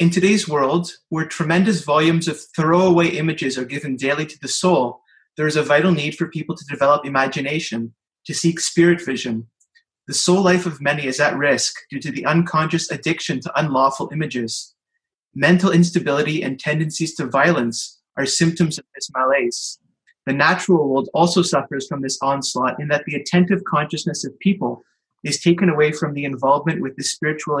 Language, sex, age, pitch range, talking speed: English, male, 30-49, 140-175 Hz, 175 wpm